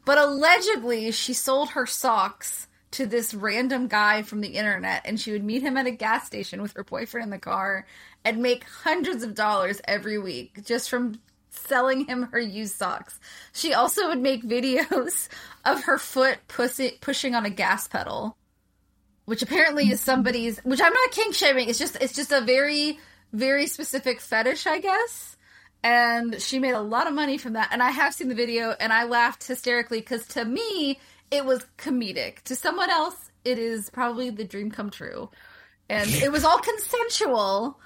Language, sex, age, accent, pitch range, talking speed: English, female, 20-39, American, 220-290 Hz, 180 wpm